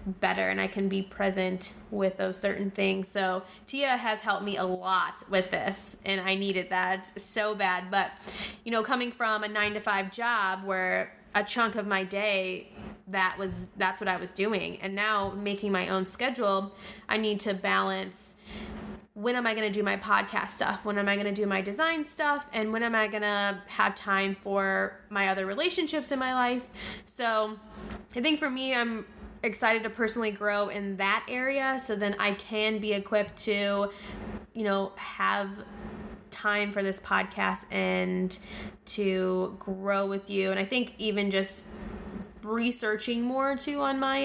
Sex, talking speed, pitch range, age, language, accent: female, 180 wpm, 195-215 Hz, 20-39, English, American